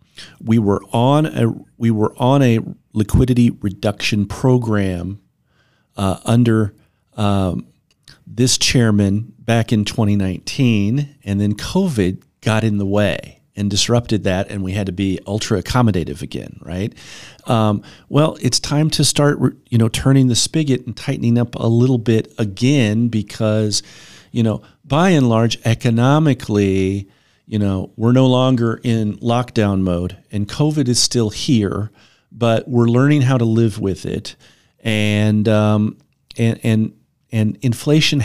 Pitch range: 105-130 Hz